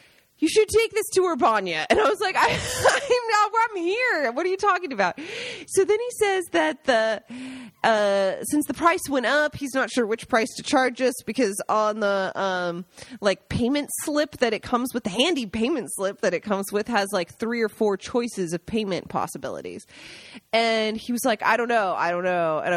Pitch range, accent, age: 210-310 Hz, American, 20-39